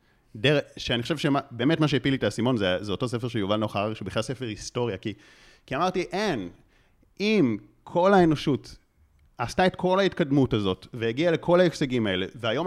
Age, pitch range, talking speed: 30-49, 105-135 Hz, 180 wpm